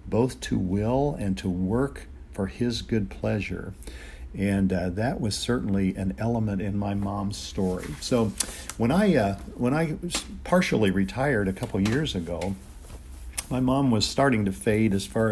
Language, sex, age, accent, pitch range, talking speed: English, male, 50-69, American, 95-115 Hz, 165 wpm